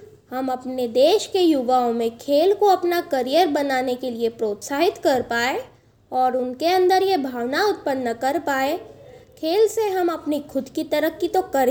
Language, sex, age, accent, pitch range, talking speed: Hindi, female, 20-39, native, 260-370 Hz, 170 wpm